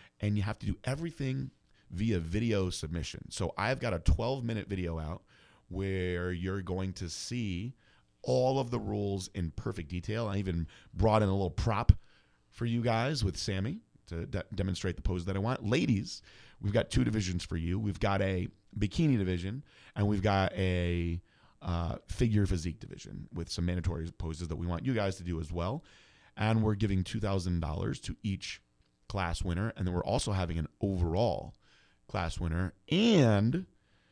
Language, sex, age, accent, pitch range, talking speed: English, male, 30-49, American, 85-110 Hz, 175 wpm